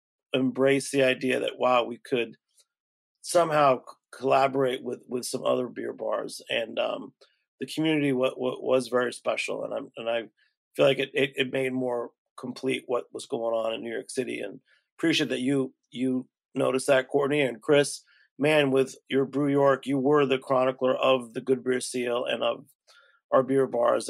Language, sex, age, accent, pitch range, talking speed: English, male, 40-59, American, 130-145 Hz, 185 wpm